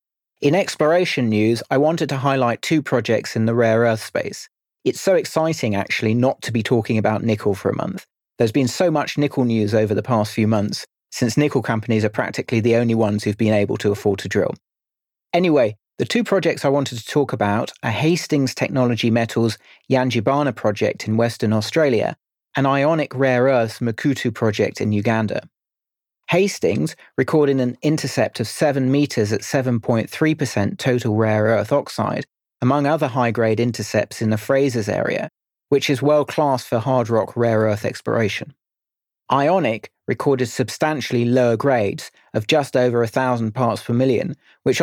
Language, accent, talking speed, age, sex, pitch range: English, British, 165 wpm, 30-49, male, 110-140 Hz